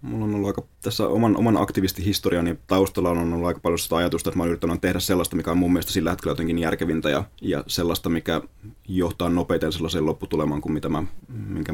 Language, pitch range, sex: Finnish, 85-100 Hz, male